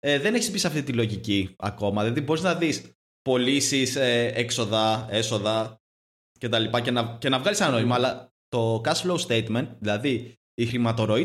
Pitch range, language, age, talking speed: 105-150 Hz, Greek, 20-39, 185 wpm